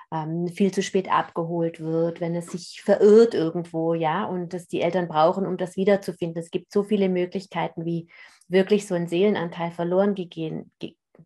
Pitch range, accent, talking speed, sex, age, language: 165-185 Hz, German, 165 wpm, female, 30-49, German